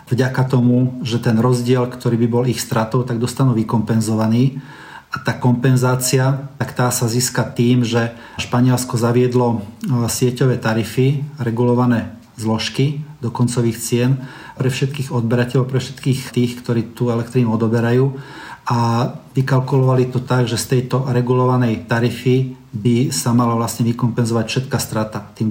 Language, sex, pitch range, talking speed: Slovak, male, 120-130 Hz, 135 wpm